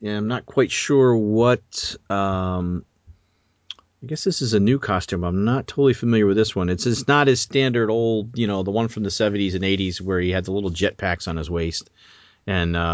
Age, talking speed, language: 40-59, 225 wpm, English